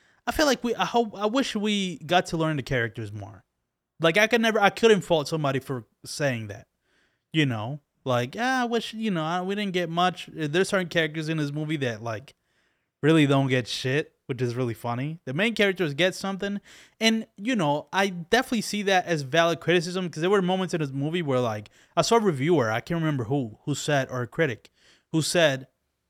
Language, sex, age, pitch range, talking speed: English, male, 20-39, 130-185 Hz, 215 wpm